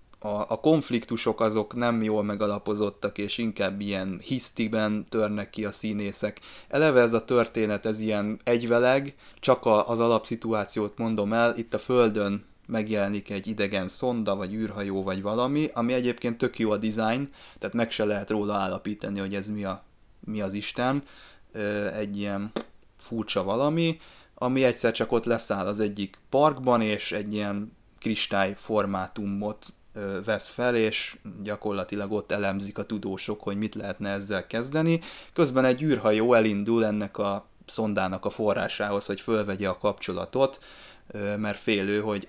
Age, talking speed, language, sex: 20-39, 145 wpm, Hungarian, male